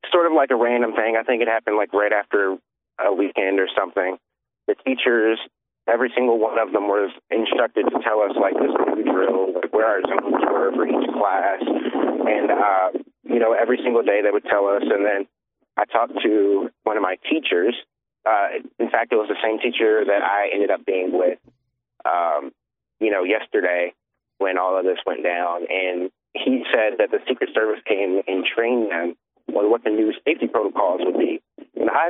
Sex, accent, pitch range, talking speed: male, American, 95-125 Hz, 200 wpm